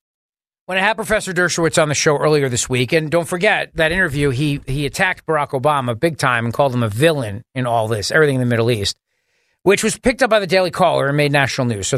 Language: English